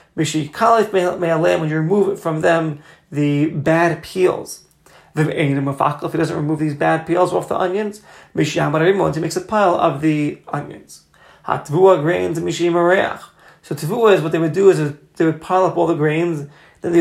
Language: English